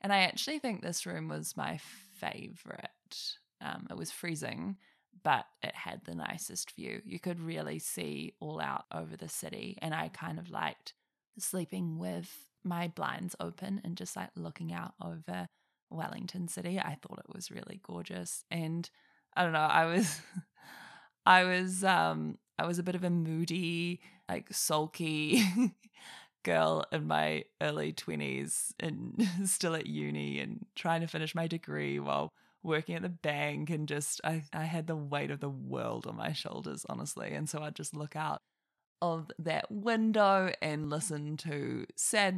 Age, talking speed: 20-39, 165 wpm